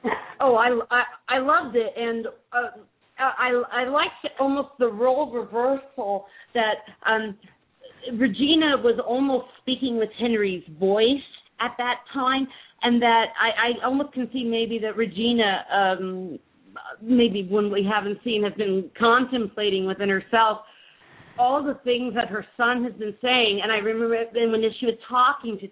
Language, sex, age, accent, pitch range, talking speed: English, female, 40-59, American, 210-250 Hz, 150 wpm